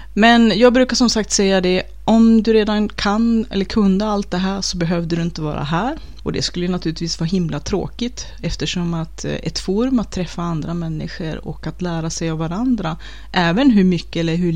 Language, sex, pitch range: Swedish, female, 160-215 Hz